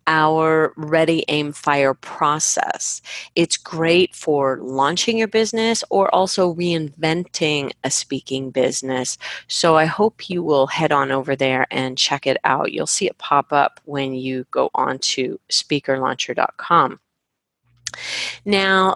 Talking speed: 135 wpm